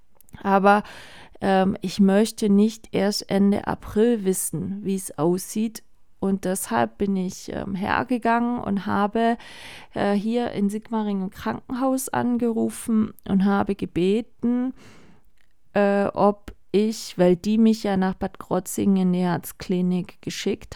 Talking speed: 125 wpm